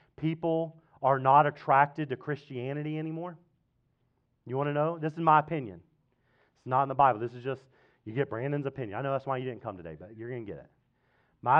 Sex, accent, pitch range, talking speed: male, American, 130-190 Hz, 215 wpm